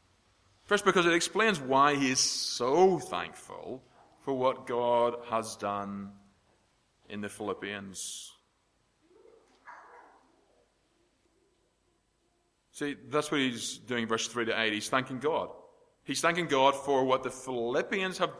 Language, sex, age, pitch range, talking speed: English, male, 30-49, 115-150 Hz, 120 wpm